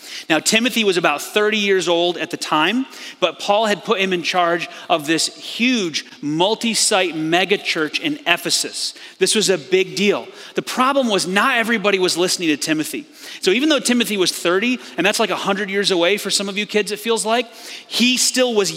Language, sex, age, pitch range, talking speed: English, male, 30-49, 175-235 Hz, 200 wpm